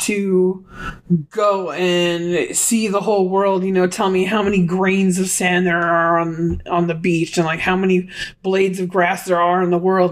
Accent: American